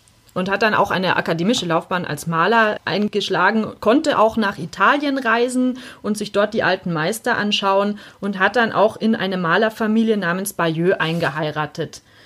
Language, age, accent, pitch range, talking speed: German, 30-49, German, 190-255 Hz, 155 wpm